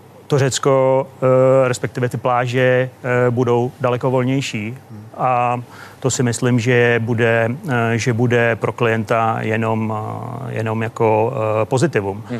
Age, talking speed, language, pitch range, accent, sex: 30-49, 100 wpm, Czech, 115-130 Hz, native, male